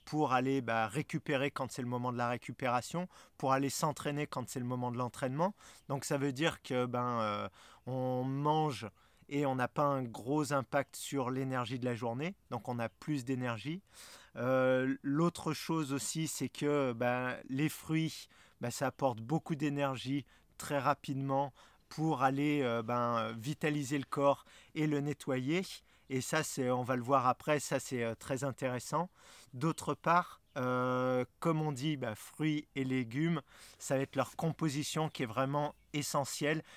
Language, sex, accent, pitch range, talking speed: French, male, French, 125-150 Hz, 165 wpm